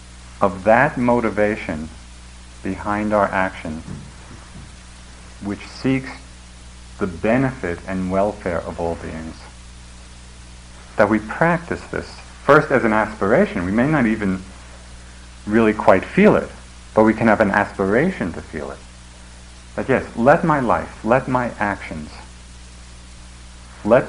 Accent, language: American, English